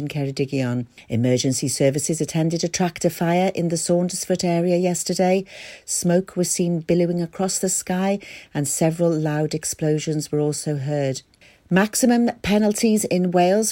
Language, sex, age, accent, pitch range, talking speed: English, female, 50-69, British, 150-190 Hz, 130 wpm